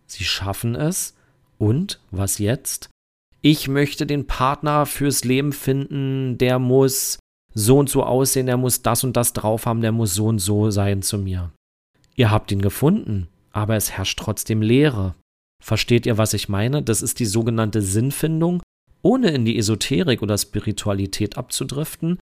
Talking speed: 160 wpm